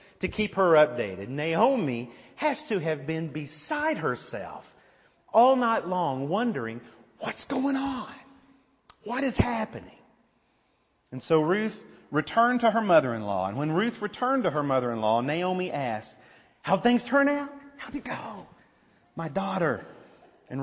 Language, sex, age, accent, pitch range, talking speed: English, male, 40-59, American, 150-240 Hz, 135 wpm